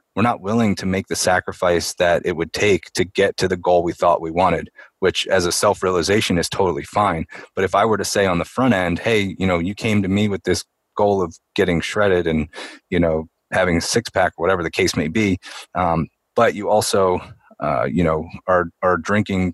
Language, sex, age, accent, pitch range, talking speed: English, male, 30-49, American, 85-105 Hz, 220 wpm